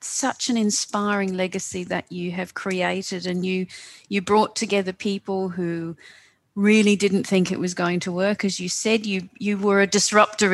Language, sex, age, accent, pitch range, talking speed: English, female, 40-59, Australian, 190-220 Hz, 175 wpm